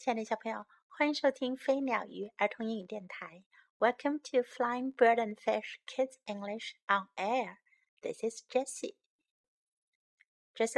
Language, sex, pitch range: Chinese, female, 220-320 Hz